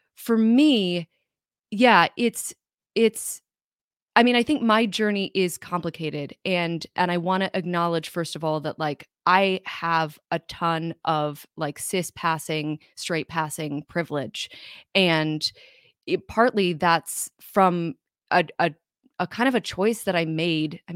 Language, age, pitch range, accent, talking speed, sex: English, 20-39, 165-205 Hz, American, 145 wpm, female